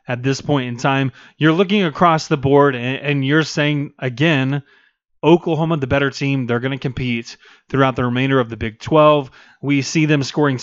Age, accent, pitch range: 30-49, American, 130-155 Hz